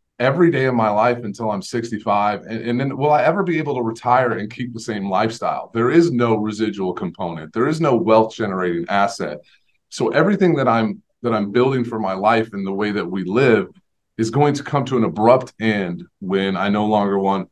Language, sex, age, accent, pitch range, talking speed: English, male, 30-49, American, 105-125 Hz, 215 wpm